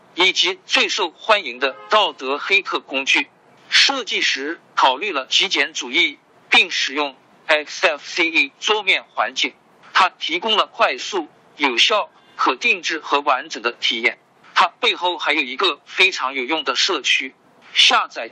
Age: 50-69